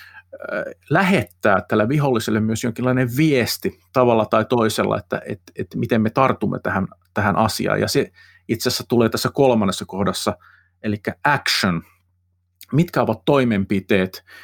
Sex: male